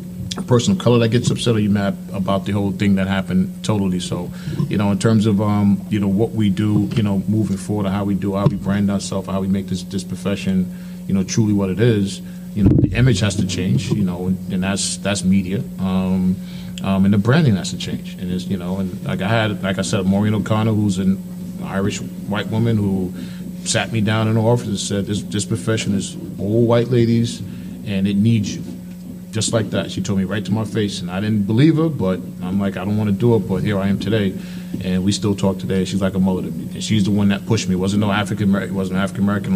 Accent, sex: American, male